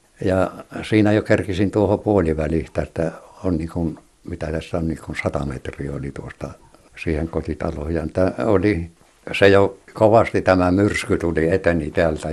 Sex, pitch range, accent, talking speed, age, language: male, 80-100 Hz, native, 130 wpm, 60-79, Finnish